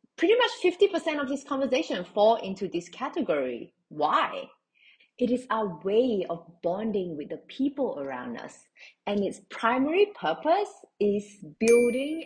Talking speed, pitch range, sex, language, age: 135 wpm, 175-280 Hz, female, English, 30-49